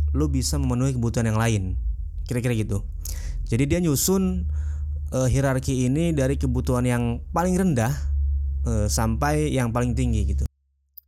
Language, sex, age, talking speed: Indonesian, male, 20-39, 135 wpm